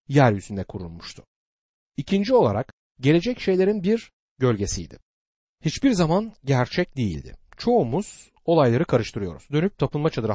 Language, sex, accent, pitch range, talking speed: Turkish, male, native, 110-180 Hz, 105 wpm